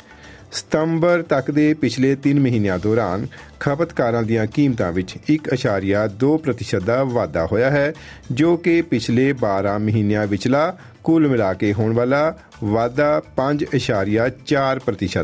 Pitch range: 110-150 Hz